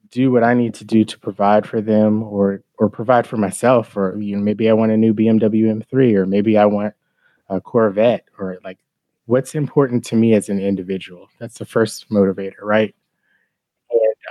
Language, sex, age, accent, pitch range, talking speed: English, male, 20-39, American, 100-115 Hz, 195 wpm